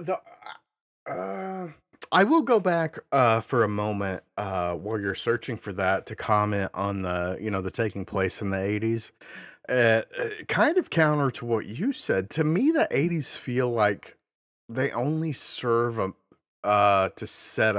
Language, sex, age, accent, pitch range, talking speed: English, male, 30-49, American, 100-150 Hz, 165 wpm